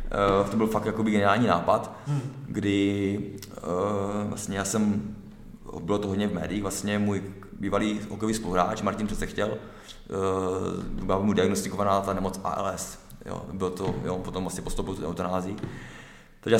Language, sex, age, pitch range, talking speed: Czech, male, 20-39, 100-110 Hz, 145 wpm